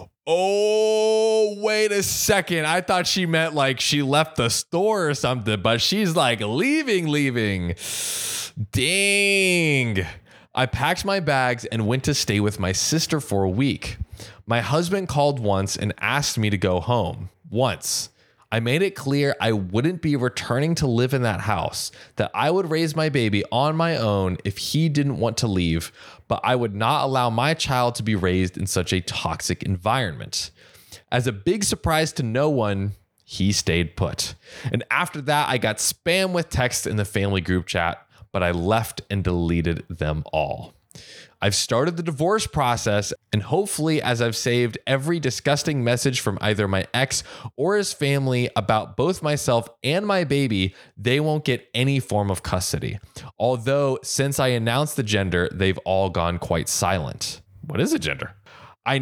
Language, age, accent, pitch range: English, 20-39, American, 105-150 Hz